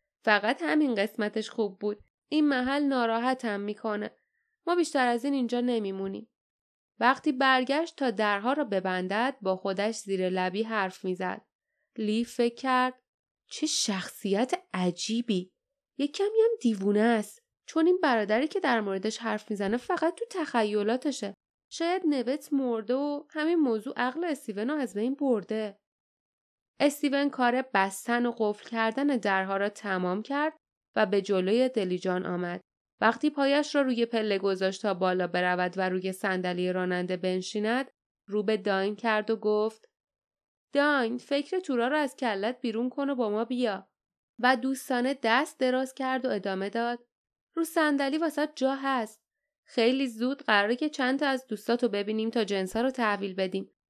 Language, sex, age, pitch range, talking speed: Persian, female, 10-29, 205-275 Hz, 150 wpm